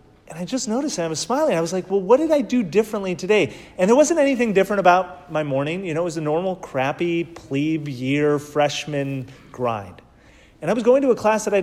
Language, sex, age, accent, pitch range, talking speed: English, male, 30-49, American, 155-220 Hz, 230 wpm